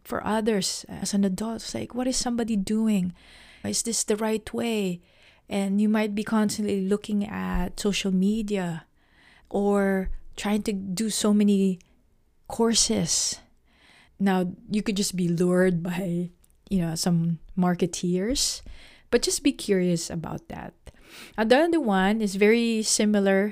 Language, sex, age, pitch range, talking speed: English, female, 20-39, 180-220 Hz, 140 wpm